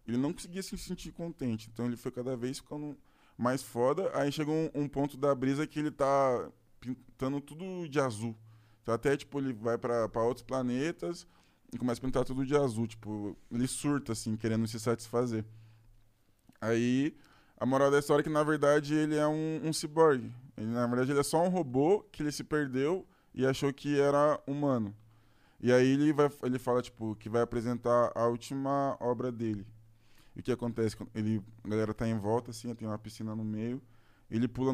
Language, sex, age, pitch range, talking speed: Portuguese, male, 20-39, 115-140 Hz, 195 wpm